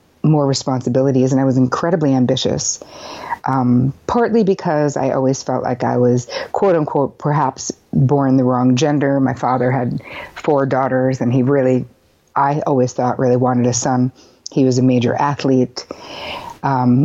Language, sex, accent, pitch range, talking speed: English, female, American, 125-145 Hz, 155 wpm